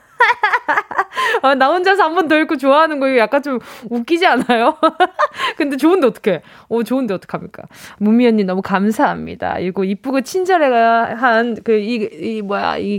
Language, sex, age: Korean, female, 20-39